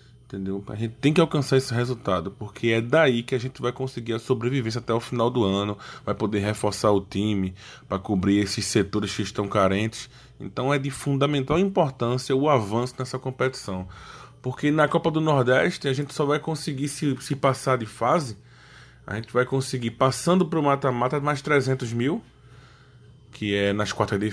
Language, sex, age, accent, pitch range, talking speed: Portuguese, male, 20-39, Brazilian, 115-155 Hz, 185 wpm